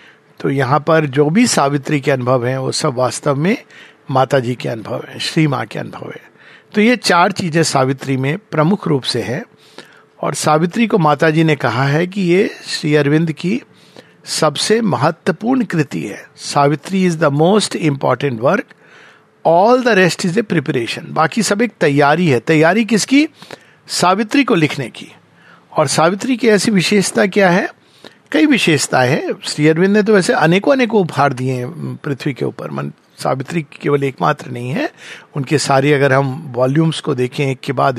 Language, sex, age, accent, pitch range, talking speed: Hindi, male, 50-69, native, 140-180 Hz, 175 wpm